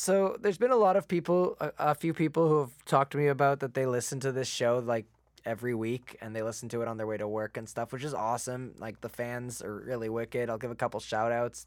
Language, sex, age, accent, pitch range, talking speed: English, male, 20-39, American, 120-180 Hz, 260 wpm